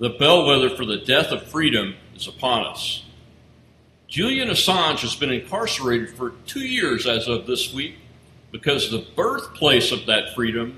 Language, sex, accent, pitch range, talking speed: English, male, American, 125-185 Hz, 155 wpm